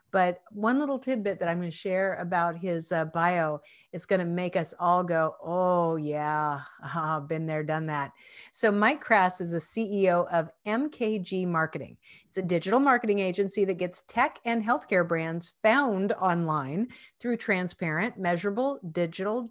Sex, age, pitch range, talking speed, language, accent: female, 50-69, 170-220 Hz, 165 wpm, English, American